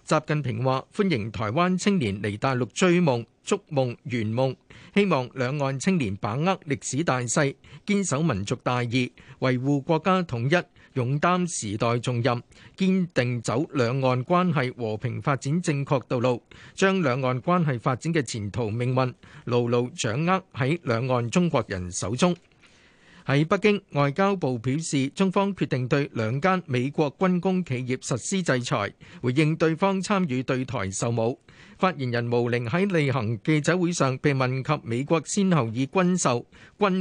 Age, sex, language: 50-69, male, Chinese